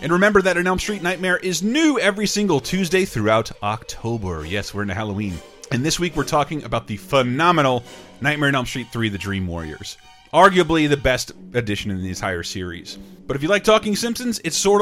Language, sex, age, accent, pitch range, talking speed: English, male, 30-49, American, 105-175 Hz, 205 wpm